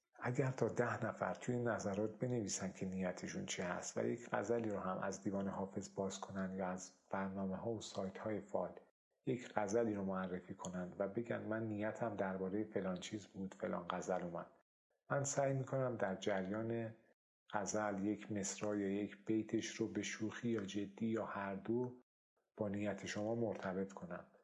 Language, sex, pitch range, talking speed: Persian, male, 95-115 Hz, 170 wpm